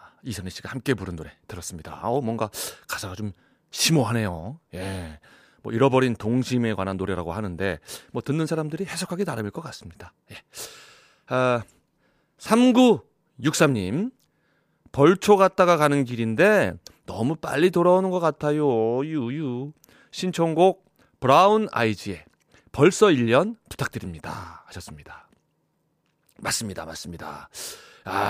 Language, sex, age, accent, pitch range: Korean, male, 40-59, native, 110-185 Hz